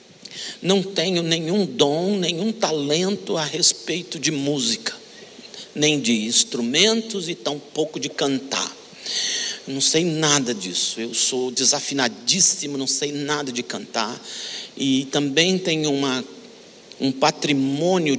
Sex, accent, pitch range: male, Brazilian, 135-160 Hz